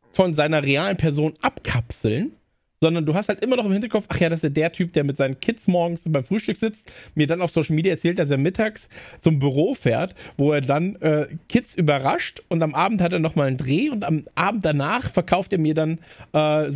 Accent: German